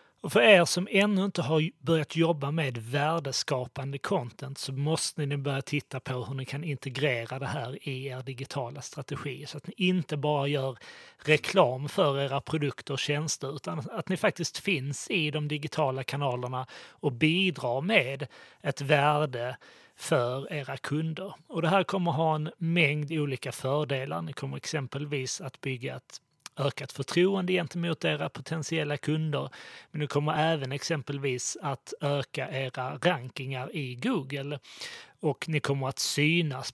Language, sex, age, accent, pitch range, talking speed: Swedish, male, 30-49, native, 140-165 Hz, 155 wpm